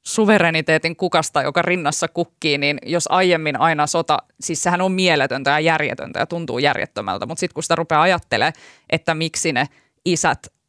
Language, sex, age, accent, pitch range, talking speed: Finnish, female, 20-39, native, 155-180 Hz, 165 wpm